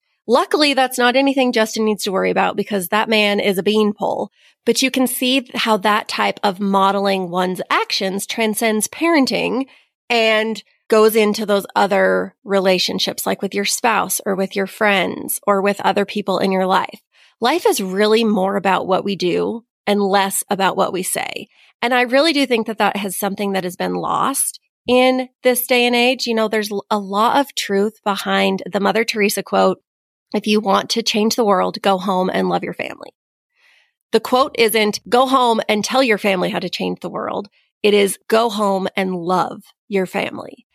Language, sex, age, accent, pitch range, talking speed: English, female, 30-49, American, 195-235 Hz, 190 wpm